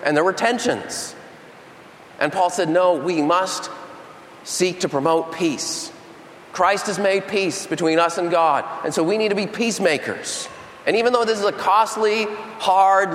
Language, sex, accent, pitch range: English, male, American, 155-195 Hz